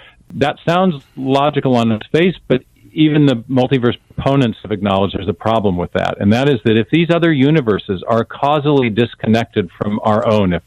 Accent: American